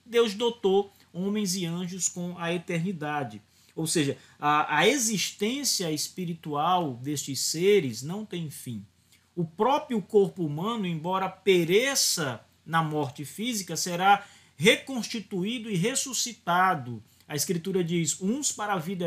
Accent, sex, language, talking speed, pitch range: Brazilian, male, Portuguese, 125 wpm, 155-210 Hz